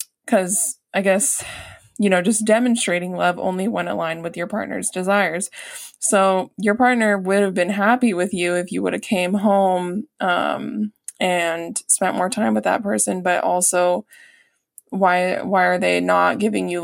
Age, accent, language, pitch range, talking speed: 20-39, American, English, 180-220 Hz, 170 wpm